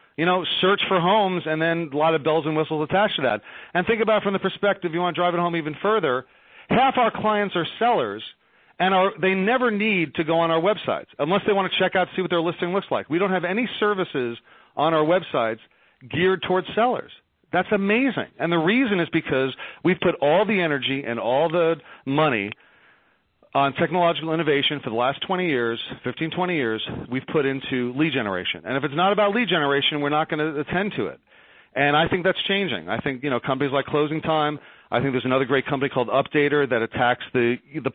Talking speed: 220 wpm